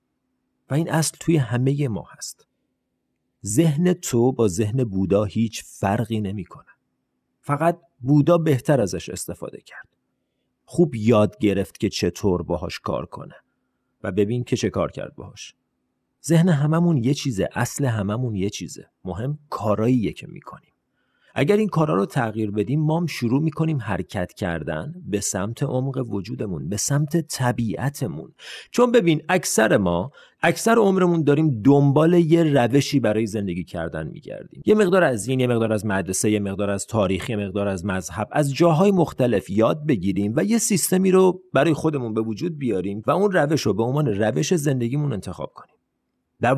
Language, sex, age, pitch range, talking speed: Persian, male, 40-59, 105-155 Hz, 160 wpm